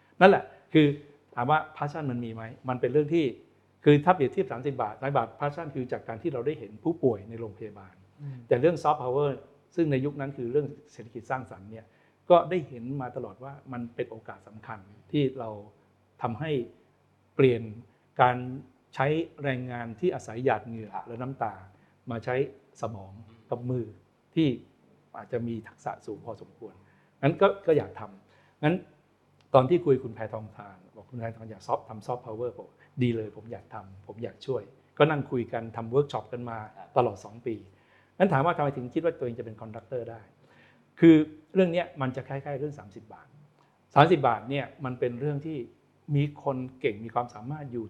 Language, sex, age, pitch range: Thai, male, 60-79, 115-145 Hz